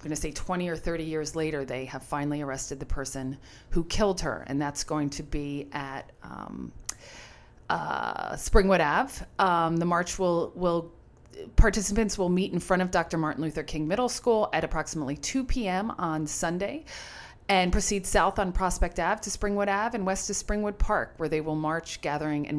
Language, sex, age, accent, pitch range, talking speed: English, female, 40-59, American, 155-210 Hz, 190 wpm